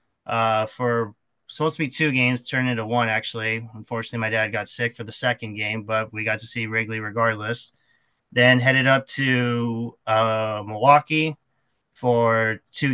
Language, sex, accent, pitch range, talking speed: English, male, American, 110-125 Hz, 160 wpm